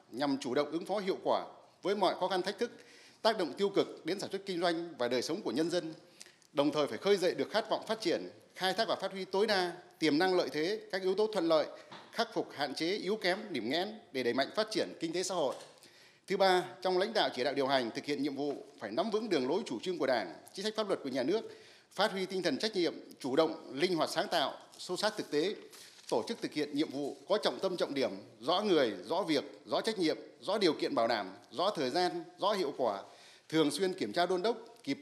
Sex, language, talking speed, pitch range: male, Vietnamese, 260 wpm, 150-215 Hz